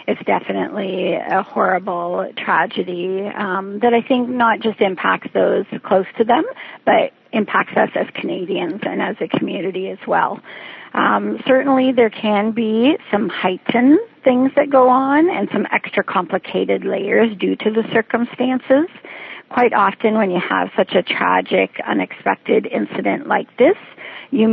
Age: 40-59